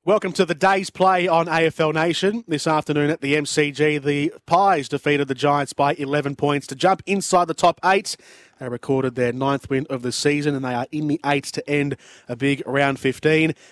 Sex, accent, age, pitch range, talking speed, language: male, Australian, 30-49, 125-155 Hz, 205 wpm, English